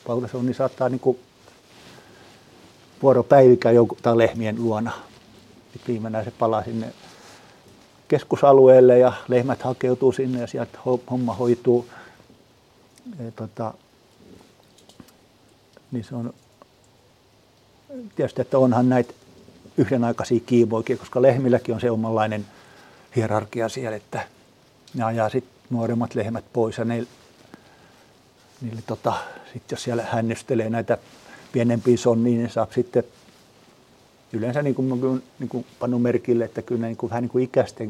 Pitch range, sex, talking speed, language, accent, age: 115-125 Hz, male, 120 wpm, Finnish, native, 50-69